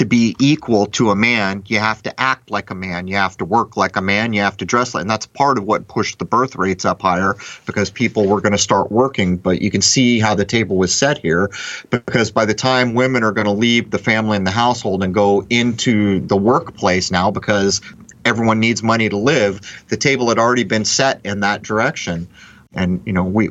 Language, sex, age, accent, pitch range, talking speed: English, male, 30-49, American, 95-115 Hz, 230 wpm